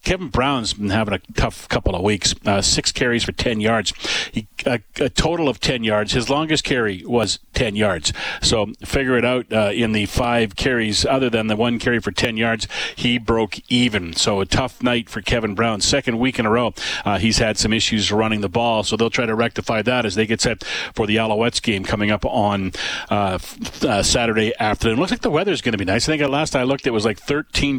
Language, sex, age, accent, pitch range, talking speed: English, male, 40-59, American, 110-130 Hz, 225 wpm